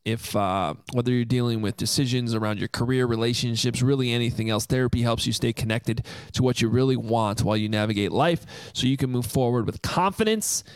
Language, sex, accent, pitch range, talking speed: English, male, American, 120-150 Hz, 195 wpm